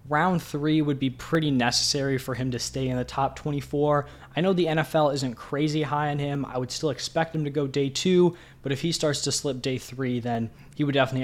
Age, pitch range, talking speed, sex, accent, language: 20-39, 130-155 Hz, 235 wpm, male, American, English